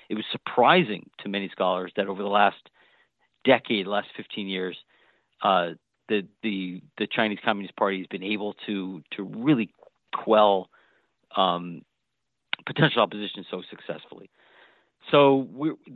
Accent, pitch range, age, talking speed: American, 95-115 Hz, 40-59, 130 wpm